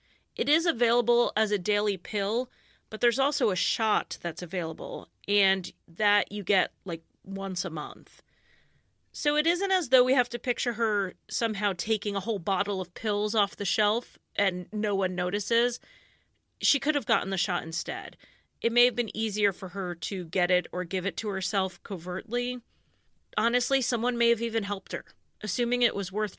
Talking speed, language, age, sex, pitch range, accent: 180 wpm, English, 30-49, female, 190-230 Hz, American